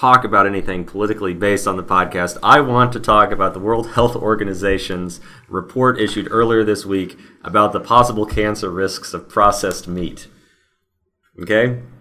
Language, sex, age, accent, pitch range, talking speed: English, male, 30-49, American, 90-110 Hz, 155 wpm